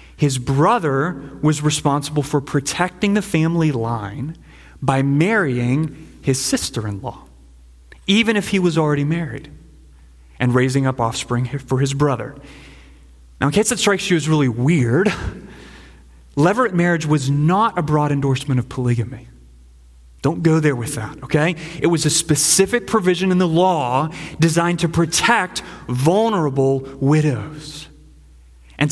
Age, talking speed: 30-49, 135 wpm